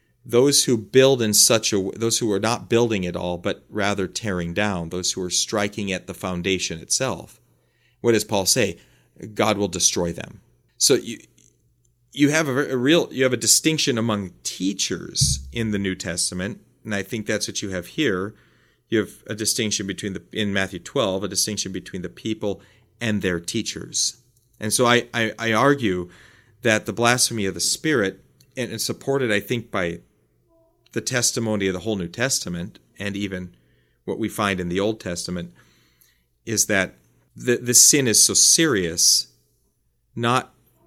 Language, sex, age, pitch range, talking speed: English, male, 40-59, 90-115 Hz, 170 wpm